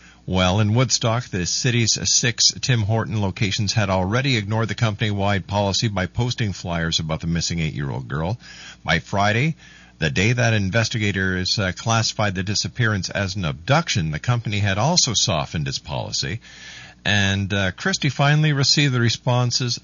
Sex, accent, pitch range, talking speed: male, American, 95-120 Hz, 150 wpm